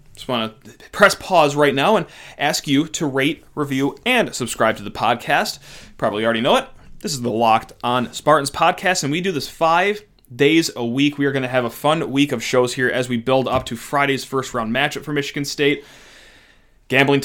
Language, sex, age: English, male, 30-49